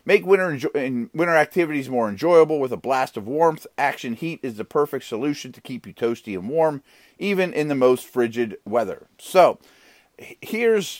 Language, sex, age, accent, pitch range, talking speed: English, male, 30-49, American, 115-160 Hz, 170 wpm